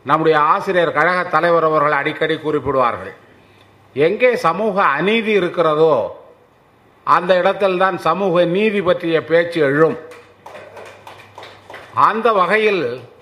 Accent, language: native, Tamil